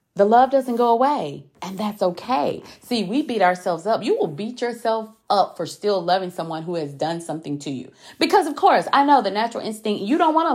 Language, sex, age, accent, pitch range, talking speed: English, female, 30-49, American, 155-235 Hz, 230 wpm